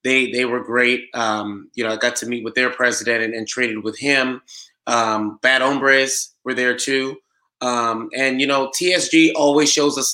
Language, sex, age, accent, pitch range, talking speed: English, male, 20-39, American, 120-140 Hz, 195 wpm